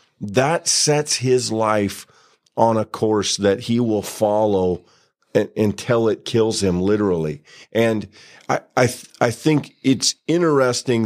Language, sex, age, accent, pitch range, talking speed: English, male, 40-59, American, 95-115 Hz, 130 wpm